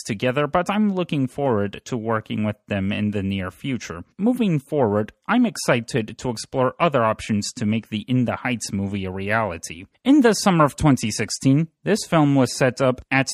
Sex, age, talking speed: male, 30-49, 185 wpm